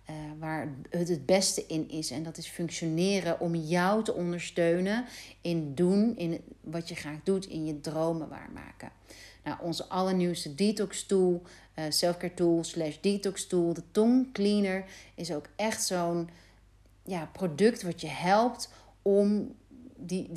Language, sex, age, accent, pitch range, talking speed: Dutch, female, 40-59, Dutch, 160-195 Hz, 145 wpm